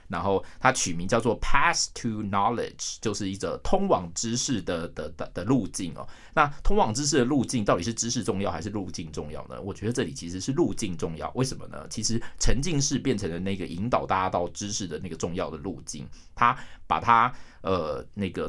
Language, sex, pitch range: Chinese, male, 90-125 Hz